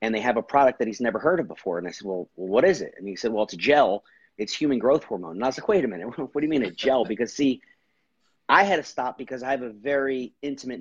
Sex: male